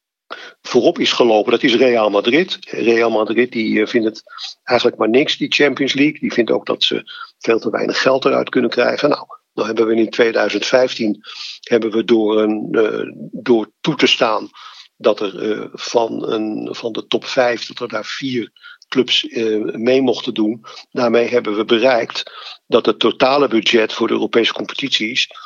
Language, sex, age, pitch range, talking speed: Dutch, male, 50-69, 115-135 Hz, 180 wpm